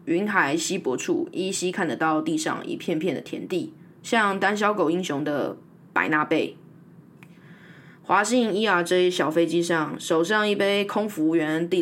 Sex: female